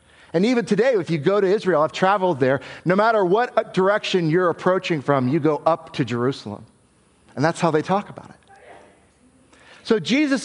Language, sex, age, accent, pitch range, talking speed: English, male, 50-69, American, 150-210 Hz, 185 wpm